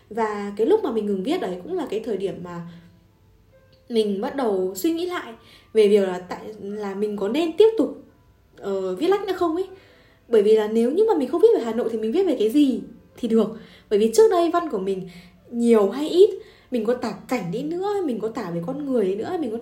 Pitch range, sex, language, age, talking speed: 180-270 Hz, female, Vietnamese, 10-29, 250 wpm